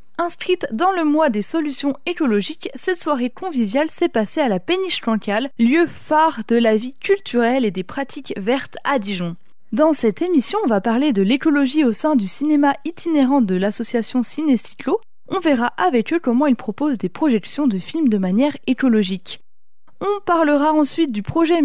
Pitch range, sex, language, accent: 220-310 Hz, female, French, French